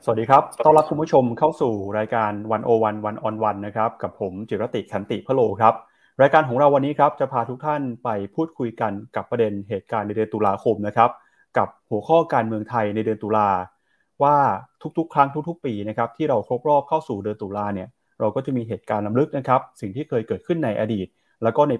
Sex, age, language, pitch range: male, 30-49, Thai, 105-135 Hz